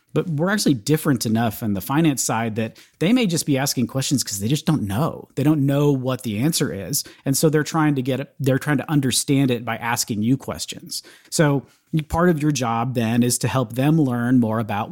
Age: 40-59